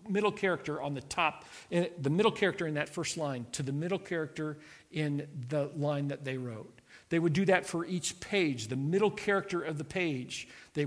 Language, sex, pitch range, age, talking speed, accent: English, male, 145-185 Hz, 50-69, 200 wpm, American